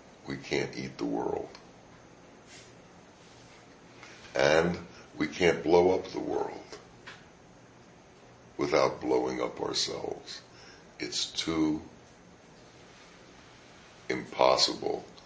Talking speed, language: 75 wpm, English